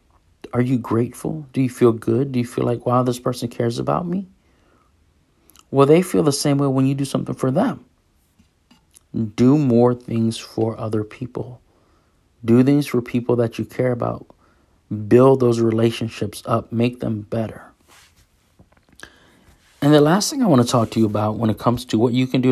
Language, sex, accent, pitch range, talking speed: English, male, American, 105-125 Hz, 185 wpm